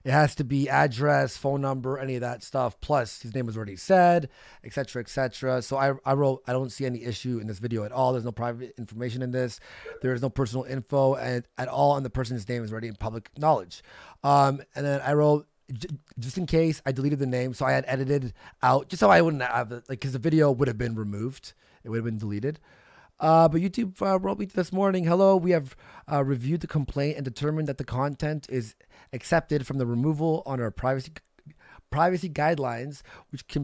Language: English